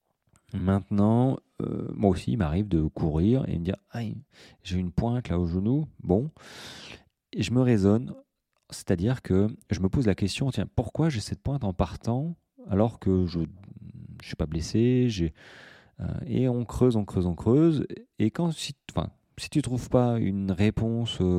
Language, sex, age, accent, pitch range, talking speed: French, male, 30-49, French, 85-110 Hz, 190 wpm